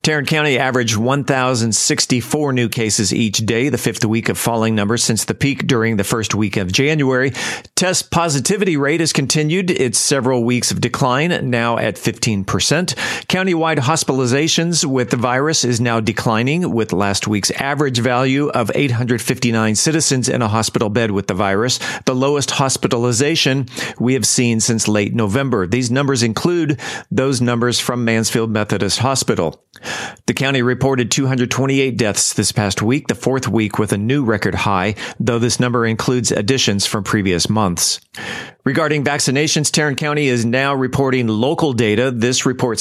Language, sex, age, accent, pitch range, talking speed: English, male, 40-59, American, 115-140 Hz, 160 wpm